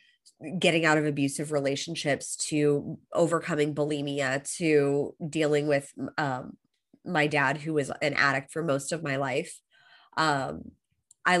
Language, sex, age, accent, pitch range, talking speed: English, female, 20-39, American, 150-180 Hz, 130 wpm